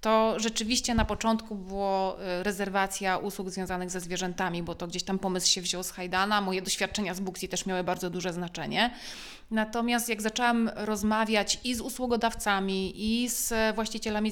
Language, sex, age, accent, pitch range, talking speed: Polish, female, 30-49, native, 200-240 Hz, 160 wpm